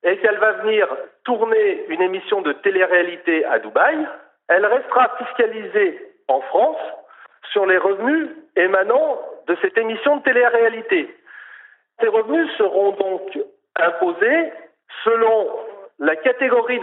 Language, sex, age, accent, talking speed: French, male, 50-69, French, 120 wpm